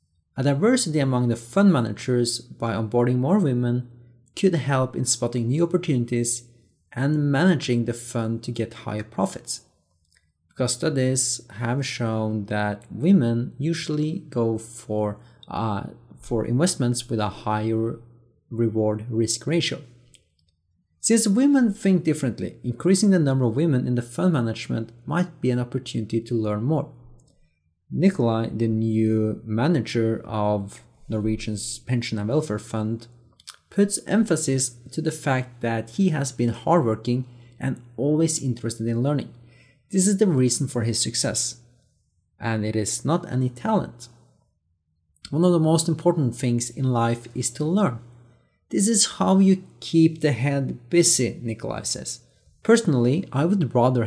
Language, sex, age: English, male, 30-49